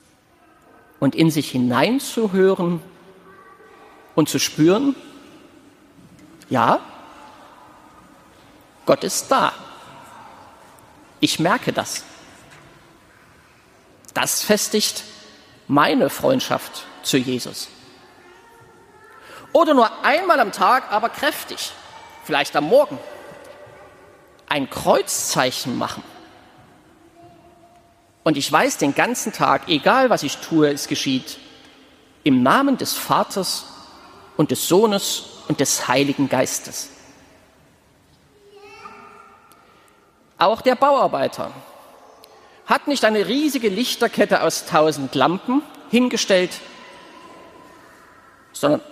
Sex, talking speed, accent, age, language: male, 85 wpm, German, 50-69, German